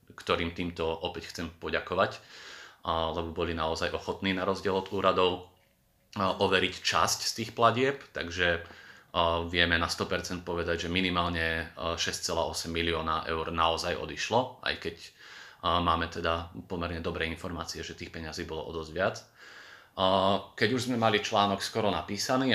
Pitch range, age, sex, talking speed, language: 85-100 Hz, 30-49, male, 135 wpm, Slovak